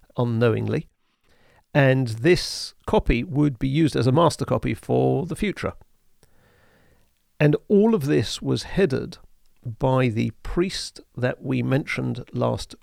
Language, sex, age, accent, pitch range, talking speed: English, male, 50-69, British, 105-150 Hz, 125 wpm